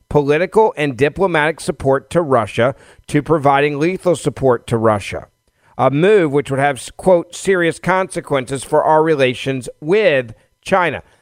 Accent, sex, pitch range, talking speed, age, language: American, male, 120-155 Hz, 135 wpm, 50-69, English